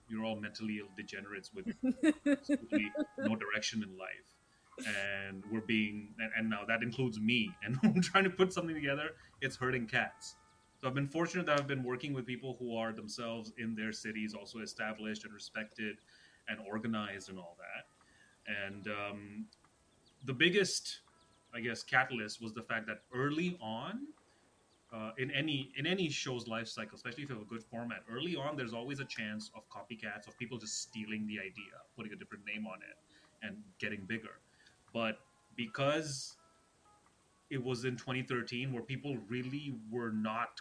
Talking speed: 170 wpm